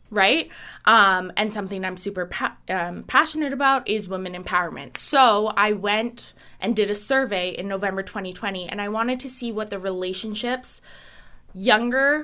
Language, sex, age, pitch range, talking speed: English, female, 20-39, 185-220 Hz, 150 wpm